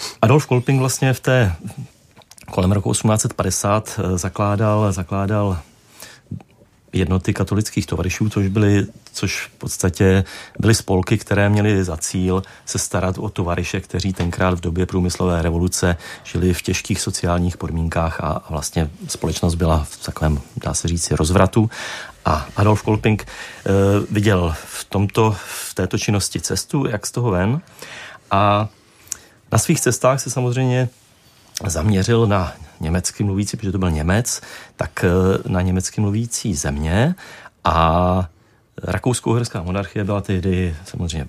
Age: 30-49